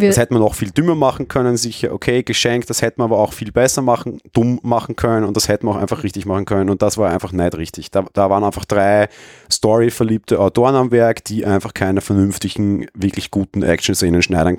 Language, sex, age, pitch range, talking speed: German, male, 30-49, 90-105 Hz, 220 wpm